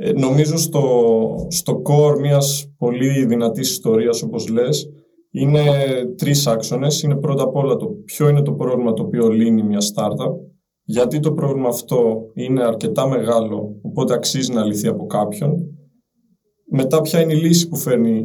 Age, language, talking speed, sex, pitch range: 20-39, Greek, 150 wpm, male, 125-160 Hz